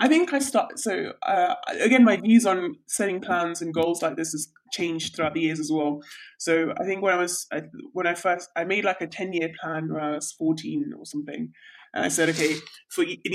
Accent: British